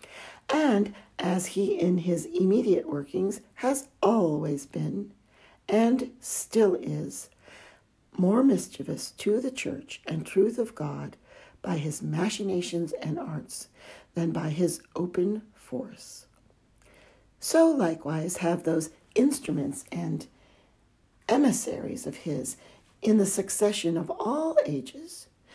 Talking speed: 110 wpm